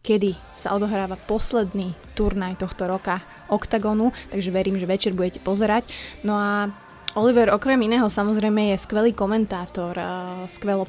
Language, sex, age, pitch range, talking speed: Slovak, female, 20-39, 195-220 Hz, 130 wpm